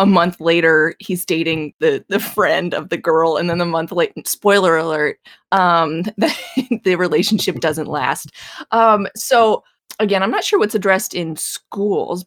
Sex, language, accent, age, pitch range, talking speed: female, English, American, 20-39, 155-195 Hz, 165 wpm